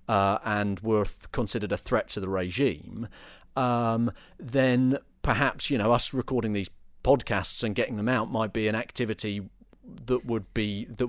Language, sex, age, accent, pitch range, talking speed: English, male, 40-59, British, 100-135 Hz, 170 wpm